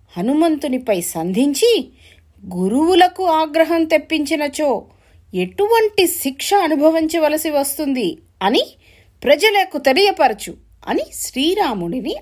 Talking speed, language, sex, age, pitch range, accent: 70 wpm, English, female, 30-49, 185-305 Hz, Indian